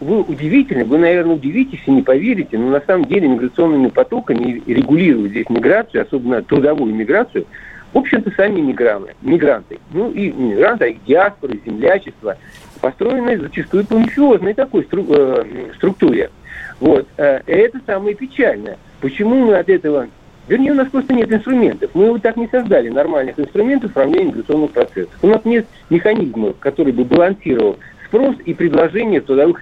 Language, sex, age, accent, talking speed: Russian, male, 60-79, native, 150 wpm